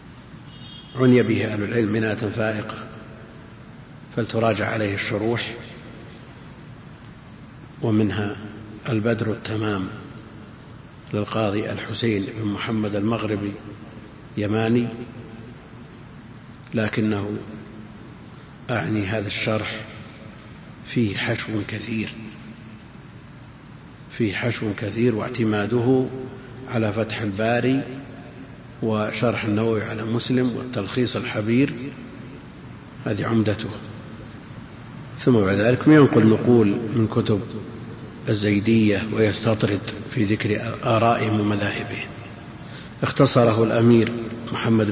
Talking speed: 75 wpm